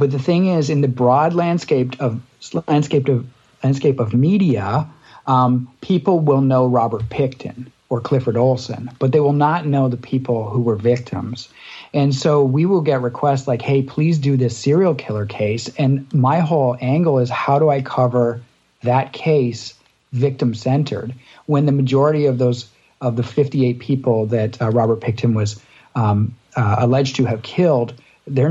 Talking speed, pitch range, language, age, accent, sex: 170 wpm, 115-140 Hz, English, 40-59, American, male